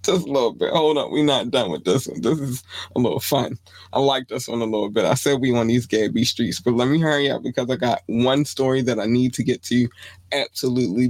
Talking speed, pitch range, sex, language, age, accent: 265 wpm, 95-145 Hz, male, English, 20-39, American